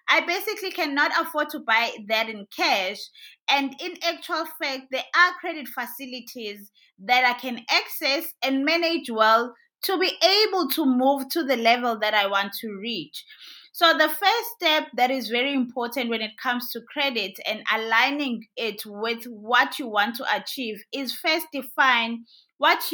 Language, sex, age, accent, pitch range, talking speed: English, female, 20-39, South African, 225-295 Hz, 165 wpm